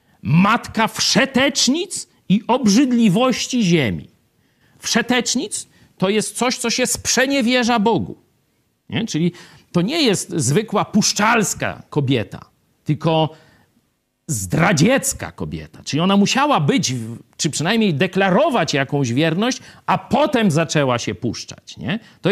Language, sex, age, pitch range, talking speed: Polish, male, 50-69, 125-205 Hz, 100 wpm